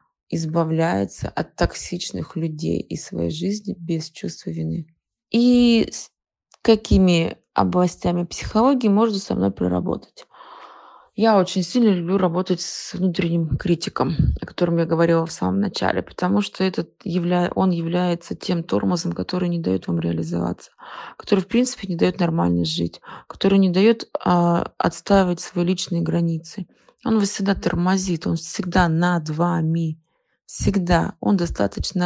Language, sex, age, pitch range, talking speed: Russian, female, 20-39, 165-190 Hz, 140 wpm